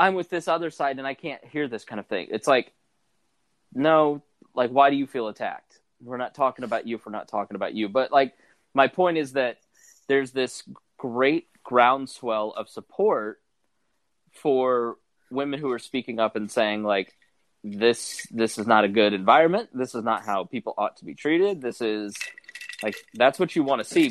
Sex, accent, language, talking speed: male, American, English, 195 wpm